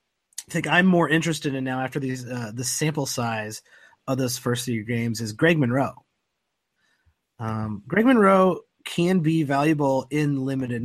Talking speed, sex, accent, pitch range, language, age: 160 wpm, male, American, 125-155 Hz, English, 30-49